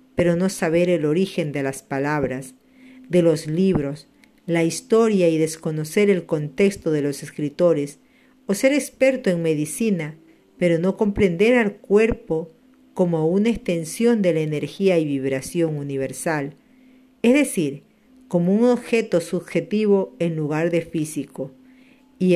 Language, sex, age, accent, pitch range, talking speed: Spanish, female, 50-69, American, 155-210 Hz, 135 wpm